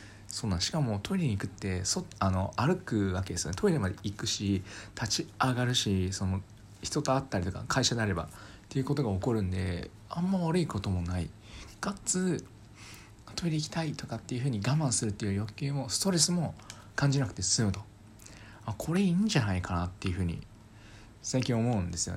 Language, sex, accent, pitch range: Japanese, male, native, 100-130 Hz